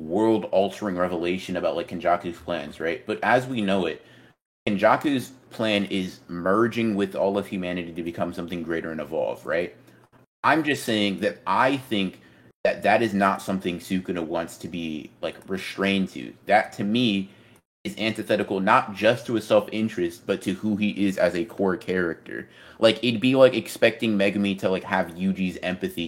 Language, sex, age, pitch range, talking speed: English, male, 30-49, 95-110 Hz, 175 wpm